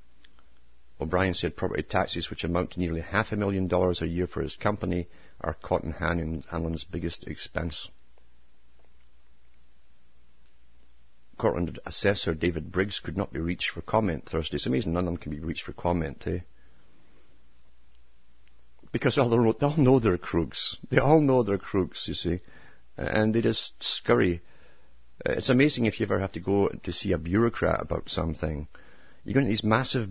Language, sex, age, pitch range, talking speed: English, male, 50-69, 75-105 Hz, 170 wpm